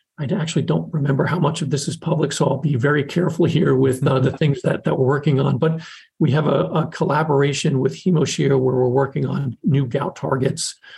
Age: 40-59